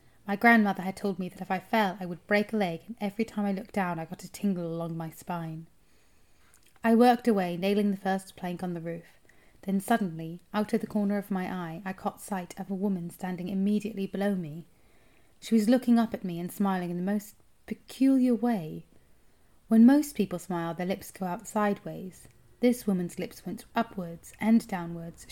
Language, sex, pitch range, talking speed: English, female, 175-220 Hz, 200 wpm